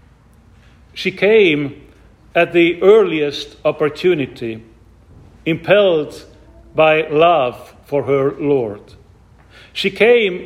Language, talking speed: English, 80 wpm